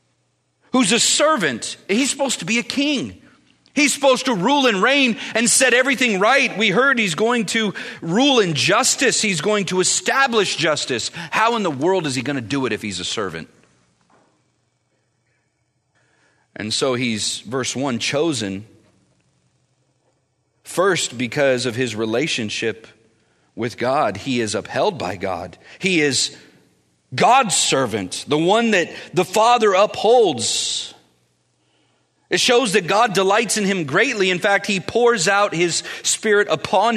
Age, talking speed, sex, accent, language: 40-59, 145 wpm, male, American, English